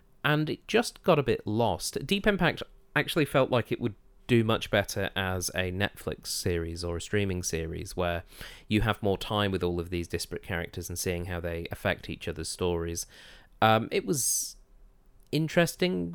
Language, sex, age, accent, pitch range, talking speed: English, male, 30-49, British, 90-120 Hz, 180 wpm